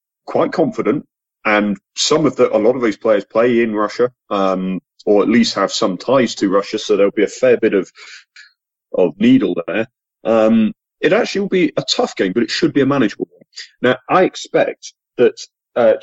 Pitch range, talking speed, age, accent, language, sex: 100-130 Hz, 200 wpm, 30-49, British, English, male